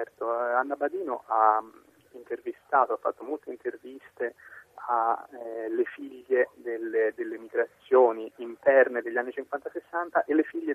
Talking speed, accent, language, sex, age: 115 wpm, native, Italian, male, 20-39